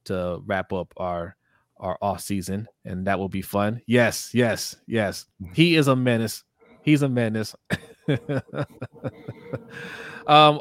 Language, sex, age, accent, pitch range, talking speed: English, male, 20-39, American, 100-140 Hz, 130 wpm